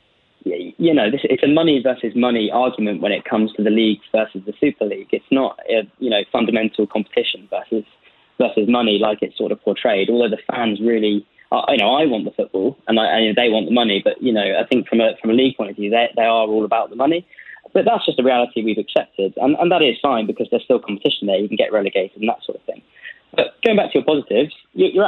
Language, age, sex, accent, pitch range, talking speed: English, 20-39, male, British, 110-140 Hz, 250 wpm